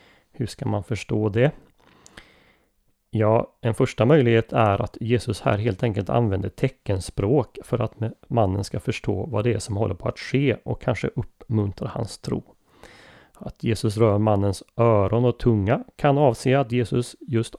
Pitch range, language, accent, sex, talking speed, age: 105-125 Hz, Swedish, native, male, 160 wpm, 30-49